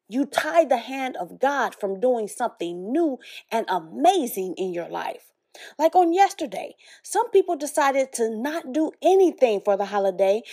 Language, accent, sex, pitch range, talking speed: English, American, female, 220-340 Hz, 160 wpm